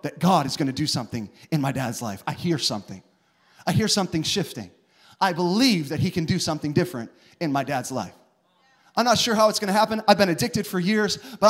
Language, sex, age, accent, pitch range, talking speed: English, male, 30-49, American, 170-245 Hz, 230 wpm